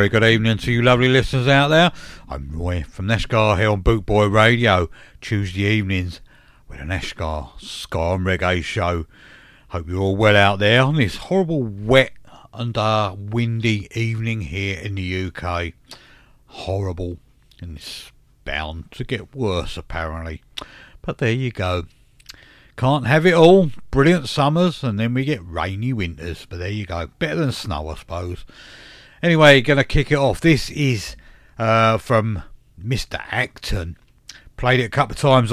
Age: 60-79